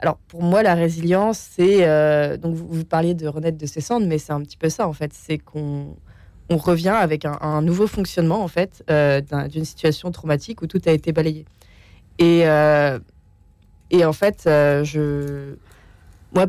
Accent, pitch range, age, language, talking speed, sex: French, 150-185 Hz, 20-39, French, 195 wpm, female